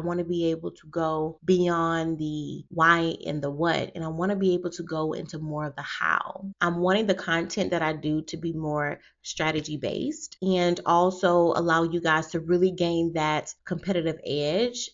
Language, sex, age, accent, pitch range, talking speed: English, female, 30-49, American, 155-180 Hz, 195 wpm